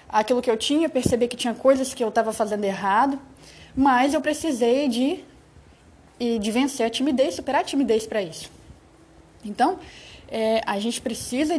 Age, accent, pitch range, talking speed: 20-39, Brazilian, 225-280 Hz, 155 wpm